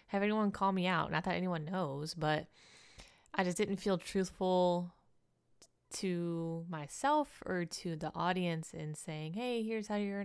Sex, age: female, 20-39